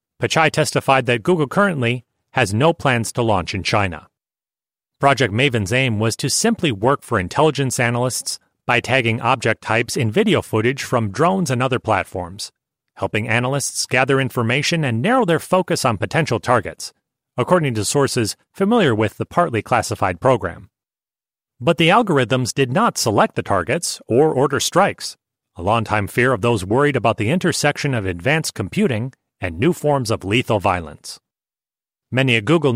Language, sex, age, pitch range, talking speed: English, male, 30-49, 110-155 Hz, 160 wpm